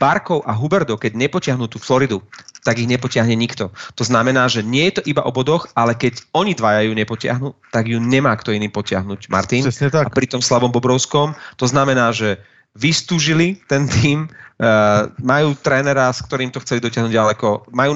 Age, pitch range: 30-49, 115-145 Hz